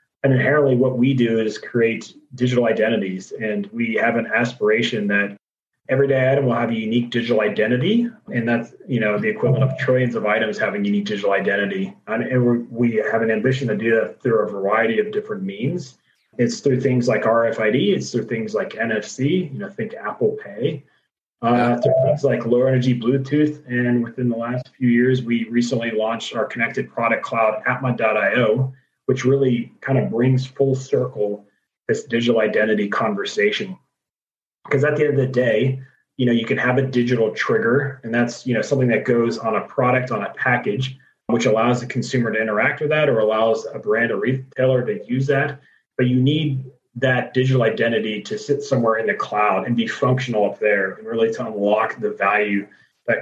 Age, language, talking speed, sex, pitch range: 30-49, English, 185 wpm, male, 115-135 Hz